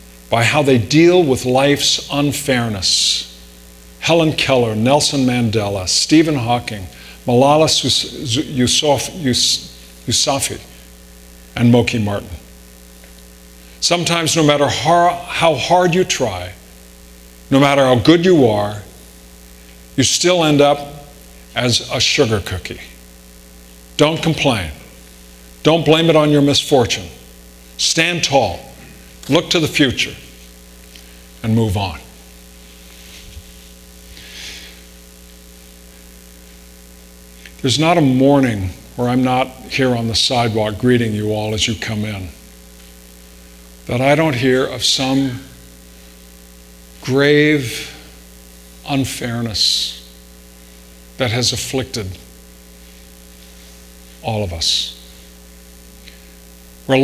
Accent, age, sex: American, 50-69, male